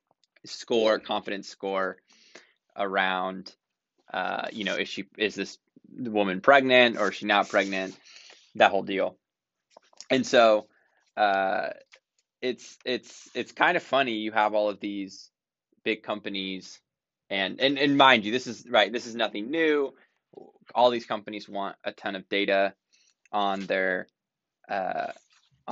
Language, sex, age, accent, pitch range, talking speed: English, male, 20-39, American, 100-120 Hz, 140 wpm